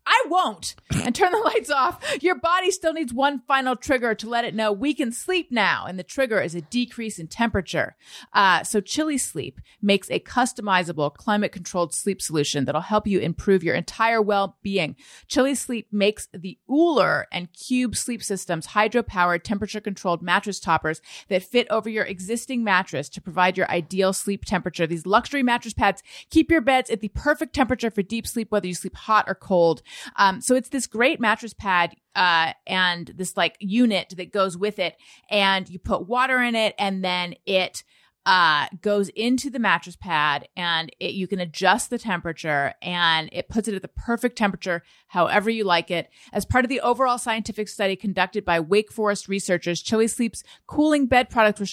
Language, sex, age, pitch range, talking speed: English, female, 30-49, 185-245 Hz, 185 wpm